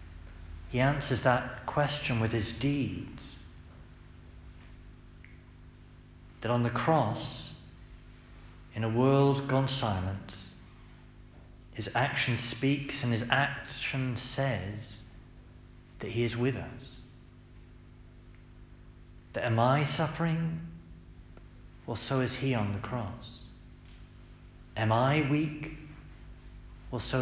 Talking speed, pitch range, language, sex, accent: 100 wpm, 90-125 Hz, English, male, British